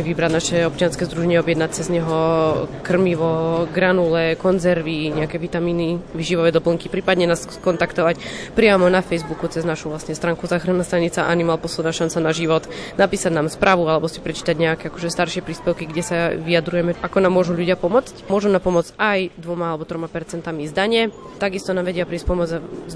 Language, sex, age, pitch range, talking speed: Slovak, female, 20-39, 165-185 Hz, 165 wpm